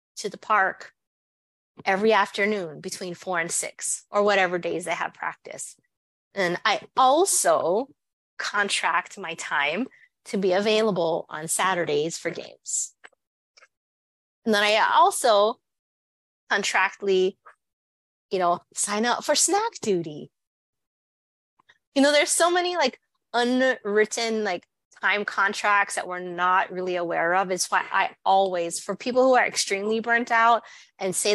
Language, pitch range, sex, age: English, 180-230 Hz, female, 20-39